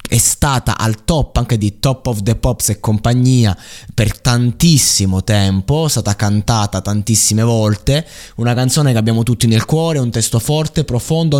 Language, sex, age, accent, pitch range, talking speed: Italian, male, 20-39, native, 95-120 Hz, 165 wpm